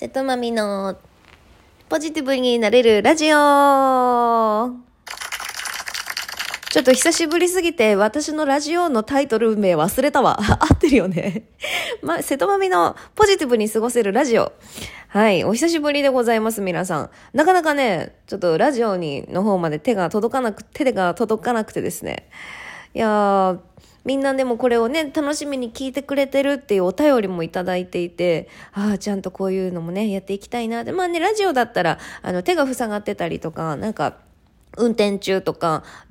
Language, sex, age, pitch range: Japanese, female, 20-39, 185-265 Hz